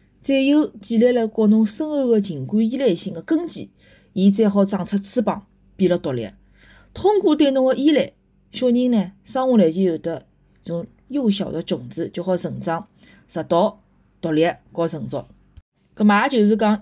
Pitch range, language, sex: 180-235 Hz, Chinese, female